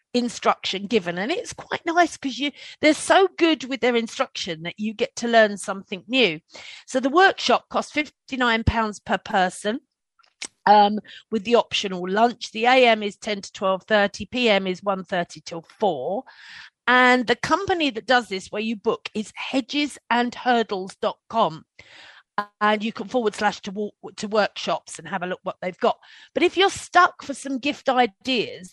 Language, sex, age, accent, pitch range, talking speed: English, female, 40-59, British, 205-270 Hz, 165 wpm